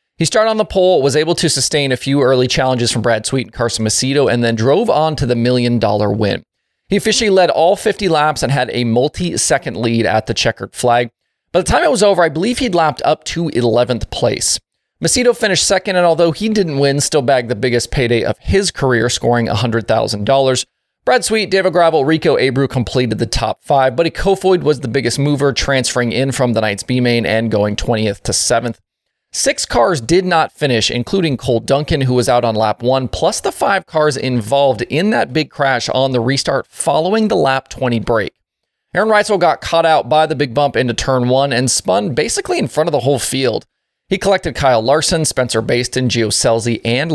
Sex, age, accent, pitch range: male, 30-49, American, 120-165 Hz